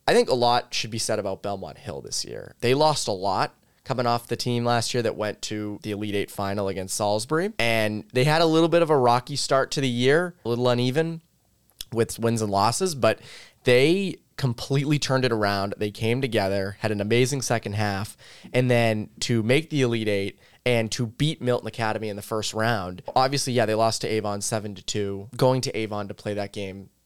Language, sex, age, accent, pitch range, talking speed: English, male, 20-39, American, 100-125 Hz, 215 wpm